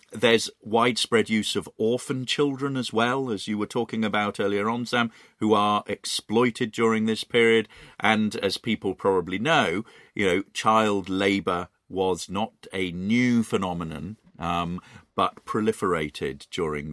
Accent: British